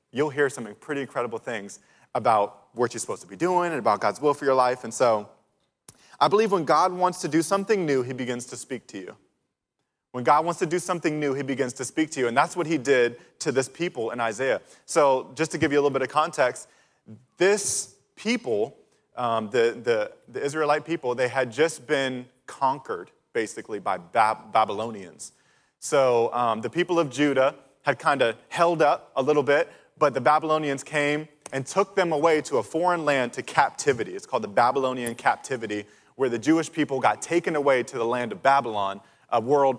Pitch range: 130-180 Hz